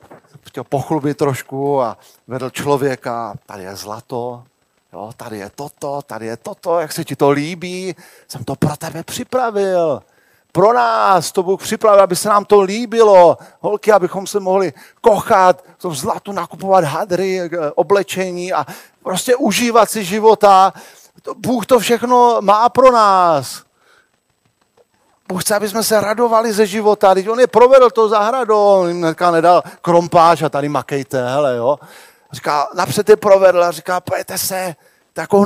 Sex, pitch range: male, 140-205 Hz